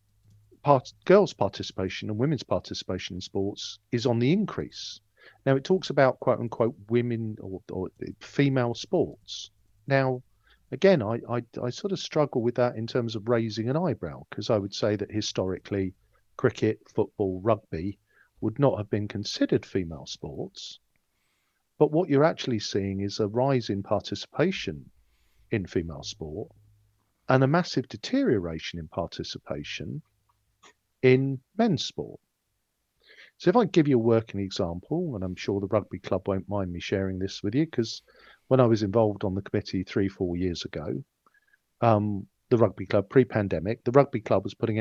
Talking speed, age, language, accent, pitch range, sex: 160 wpm, 50-69, English, British, 100-130 Hz, male